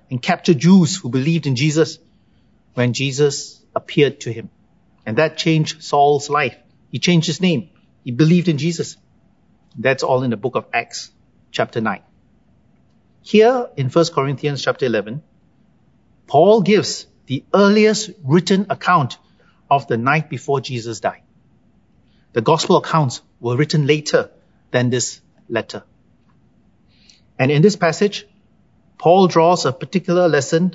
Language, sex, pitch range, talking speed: English, male, 135-180 Hz, 135 wpm